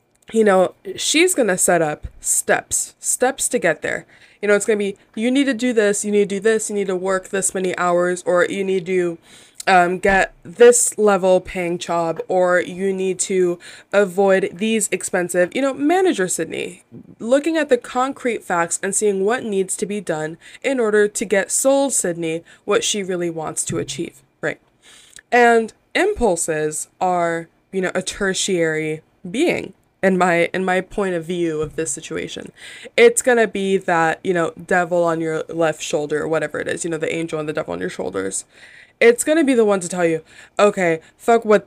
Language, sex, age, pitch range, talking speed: English, female, 20-39, 170-230 Hz, 195 wpm